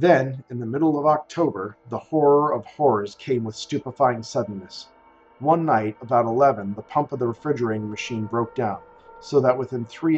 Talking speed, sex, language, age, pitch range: 175 wpm, male, English, 40-59, 110-140 Hz